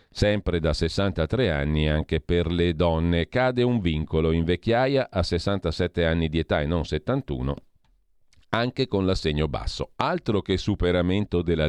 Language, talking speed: Italian, 150 wpm